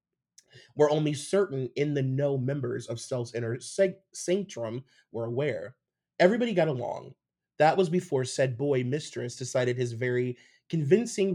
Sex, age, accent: male, 30-49, American